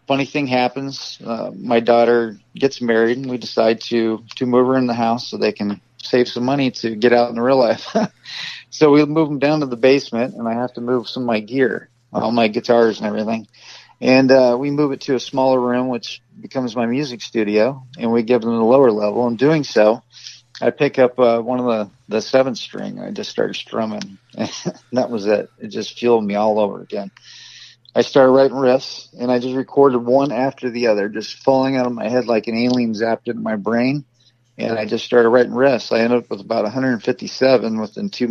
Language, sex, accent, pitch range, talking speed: English, male, American, 115-130 Hz, 220 wpm